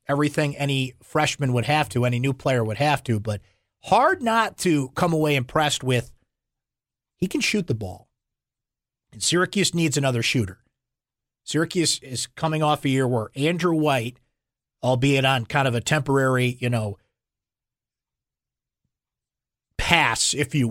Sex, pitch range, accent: male, 120-155 Hz, American